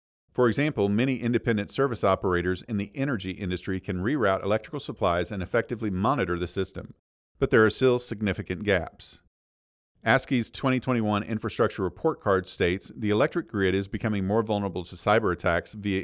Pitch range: 90-115 Hz